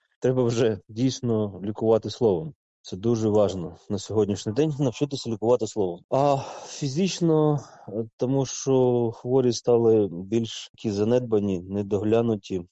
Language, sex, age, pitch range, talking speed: Ukrainian, male, 20-39, 100-120 Hz, 110 wpm